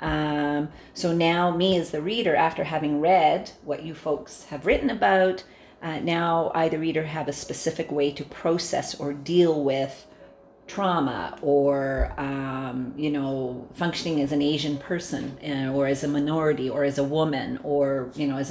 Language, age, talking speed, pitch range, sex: English, 40-59, 170 wpm, 140-160 Hz, female